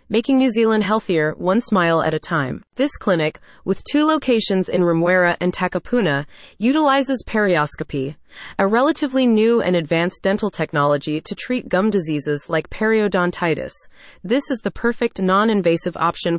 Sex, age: female, 30-49